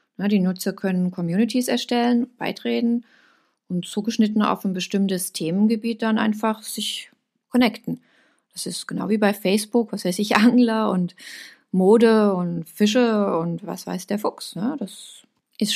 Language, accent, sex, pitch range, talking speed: German, German, female, 200-250 Hz, 140 wpm